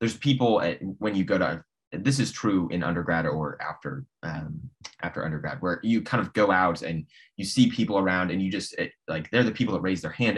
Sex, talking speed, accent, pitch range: male, 225 wpm, American, 80-105 Hz